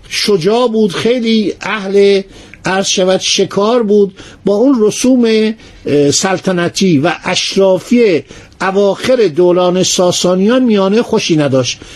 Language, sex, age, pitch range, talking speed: Persian, male, 50-69, 175-230 Hz, 95 wpm